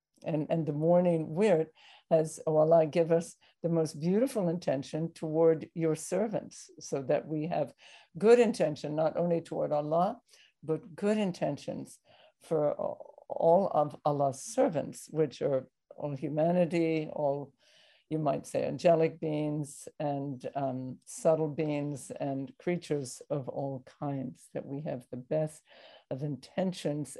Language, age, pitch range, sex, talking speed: English, 60-79, 145-175 Hz, female, 135 wpm